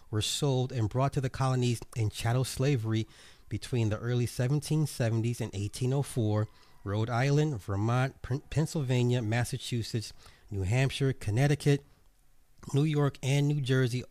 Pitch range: 105-130 Hz